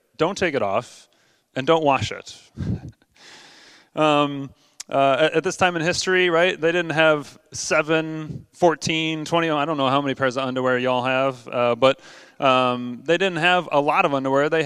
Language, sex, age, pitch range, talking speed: English, male, 30-49, 140-165 Hz, 180 wpm